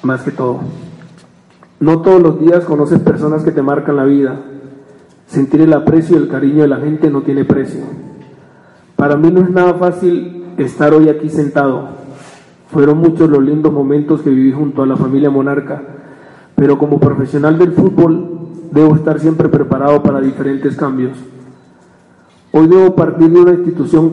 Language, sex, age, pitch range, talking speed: Spanish, male, 40-59, 140-165 Hz, 165 wpm